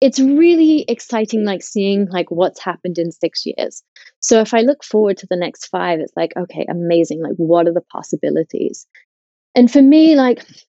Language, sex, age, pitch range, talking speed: English, female, 30-49, 175-225 Hz, 185 wpm